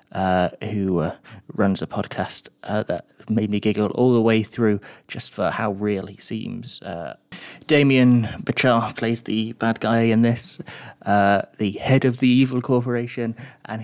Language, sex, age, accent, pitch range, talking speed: English, male, 30-49, British, 105-125 Hz, 165 wpm